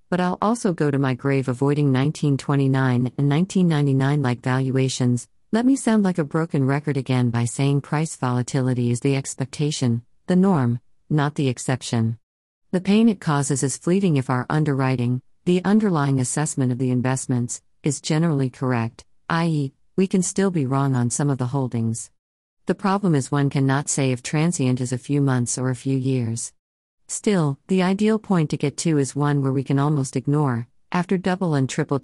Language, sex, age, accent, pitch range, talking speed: English, female, 50-69, American, 130-160 Hz, 180 wpm